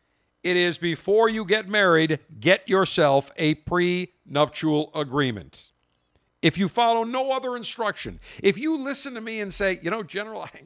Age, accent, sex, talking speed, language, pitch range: 50-69, American, male, 150 wpm, English, 110-170 Hz